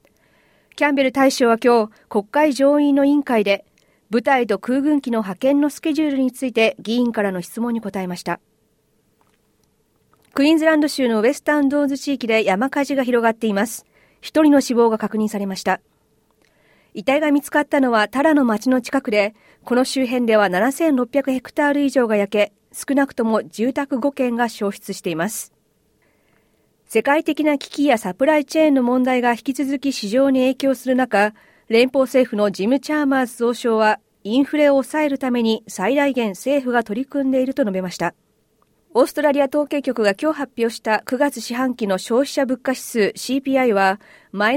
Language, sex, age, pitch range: Japanese, female, 40-59, 215-280 Hz